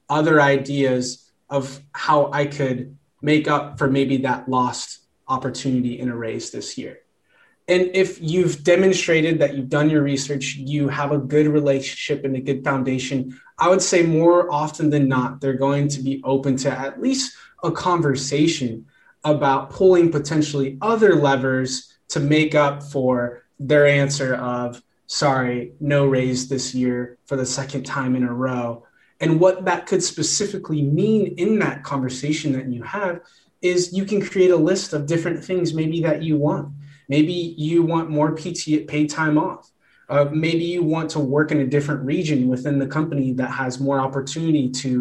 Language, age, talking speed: English, 20-39, 170 wpm